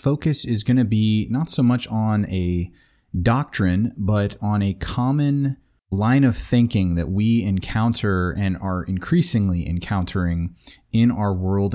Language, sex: English, male